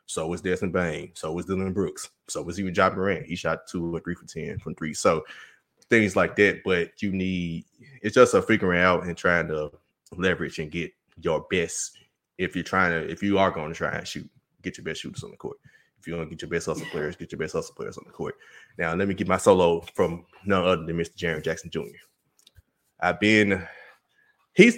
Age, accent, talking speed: 20-39, American, 230 wpm